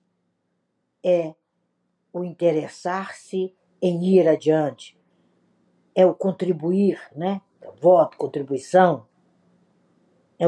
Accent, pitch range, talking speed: Brazilian, 150-200 Hz, 75 wpm